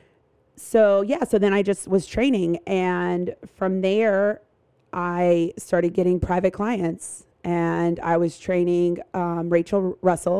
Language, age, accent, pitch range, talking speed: English, 30-49, American, 175-190 Hz, 135 wpm